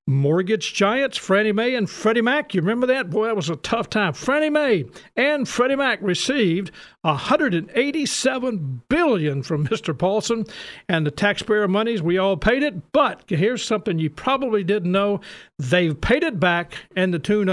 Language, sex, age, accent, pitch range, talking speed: English, male, 50-69, American, 185-250 Hz, 170 wpm